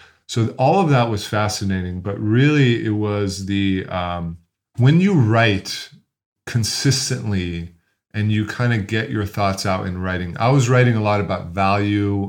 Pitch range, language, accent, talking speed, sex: 100-130 Hz, English, American, 160 wpm, male